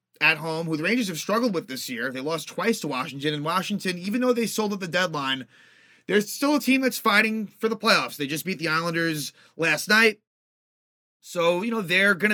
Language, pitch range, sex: English, 155-200 Hz, male